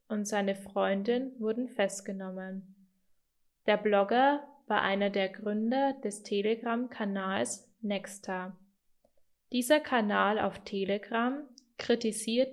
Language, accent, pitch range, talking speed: German, German, 195-245 Hz, 90 wpm